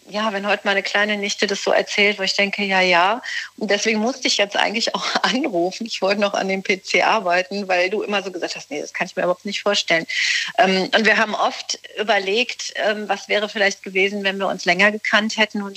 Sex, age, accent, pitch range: female, 50-69, German, 180-210 Hz